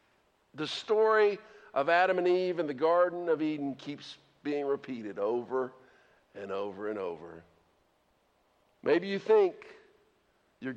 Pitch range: 145-195 Hz